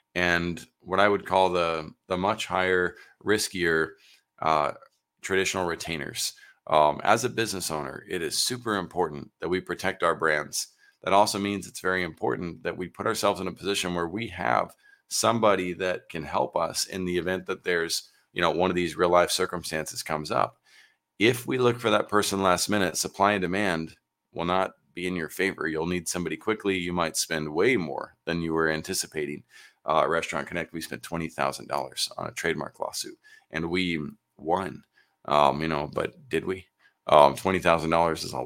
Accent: American